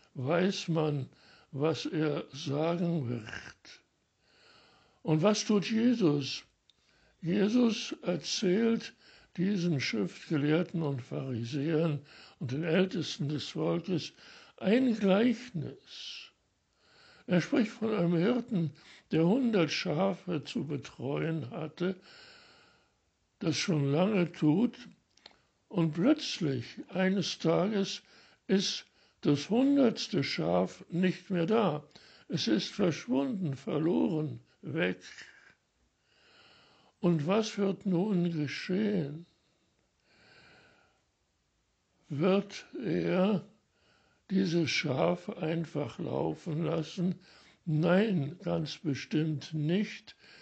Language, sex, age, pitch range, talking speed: German, male, 60-79, 155-200 Hz, 85 wpm